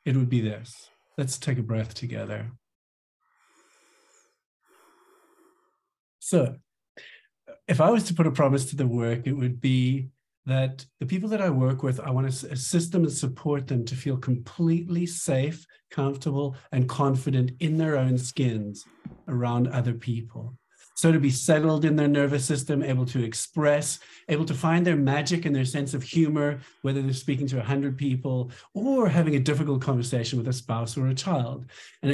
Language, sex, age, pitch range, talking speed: English, male, 50-69, 125-160 Hz, 170 wpm